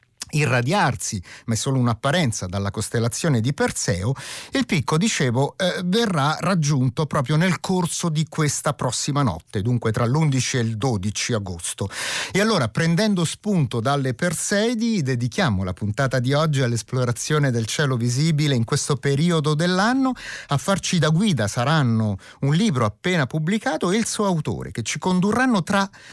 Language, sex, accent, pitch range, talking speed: Italian, male, native, 115-170 Hz, 150 wpm